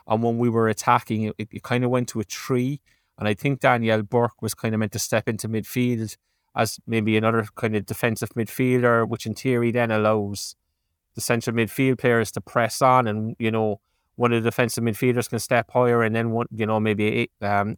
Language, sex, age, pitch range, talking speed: English, male, 20-39, 110-120 Hz, 210 wpm